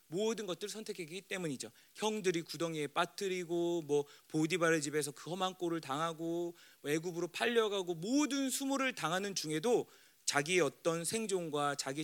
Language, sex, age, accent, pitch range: Korean, male, 40-59, native, 165-255 Hz